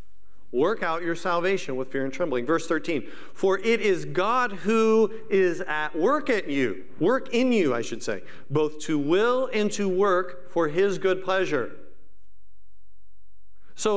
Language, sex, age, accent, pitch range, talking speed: English, male, 50-69, American, 145-210 Hz, 160 wpm